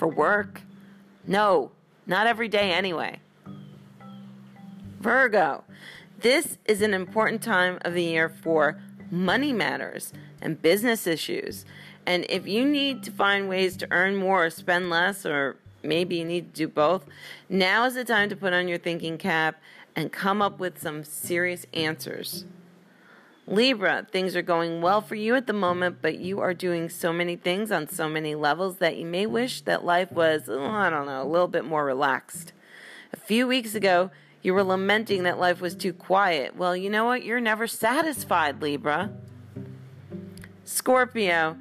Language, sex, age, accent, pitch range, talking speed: English, female, 40-59, American, 160-200 Hz, 170 wpm